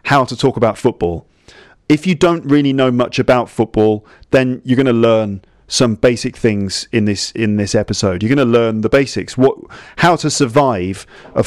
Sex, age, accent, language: male, 40-59, British, English